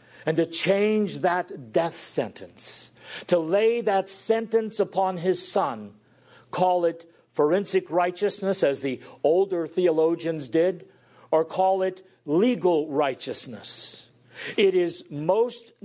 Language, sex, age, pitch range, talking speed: English, male, 50-69, 125-180 Hz, 115 wpm